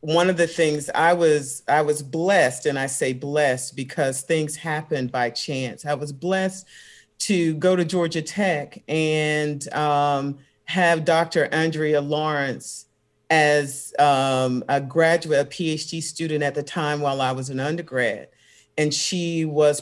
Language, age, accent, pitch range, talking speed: English, 40-59, American, 145-175 Hz, 150 wpm